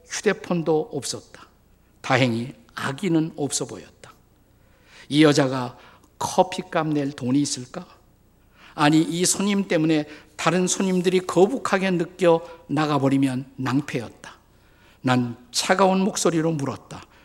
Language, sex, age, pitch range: Korean, male, 50-69, 120-165 Hz